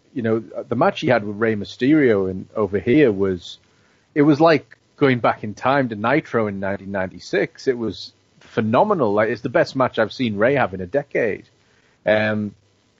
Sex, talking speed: male, 185 wpm